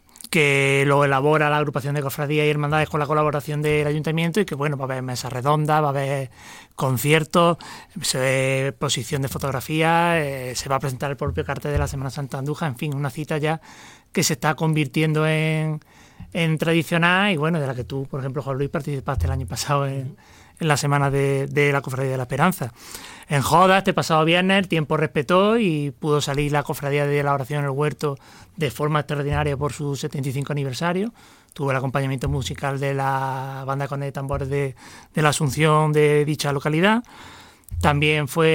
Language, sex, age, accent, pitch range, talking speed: Spanish, male, 30-49, Spanish, 140-155 Hz, 195 wpm